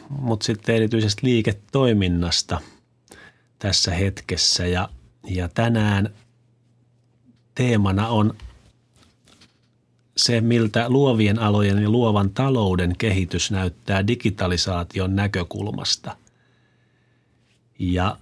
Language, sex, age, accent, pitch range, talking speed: Finnish, male, 30-49, native, 95-120 Hz, 70 wpm